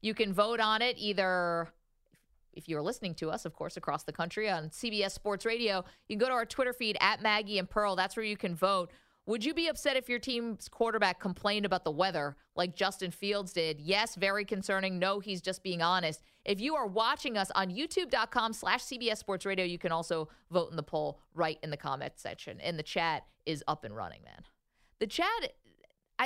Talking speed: 215 wpm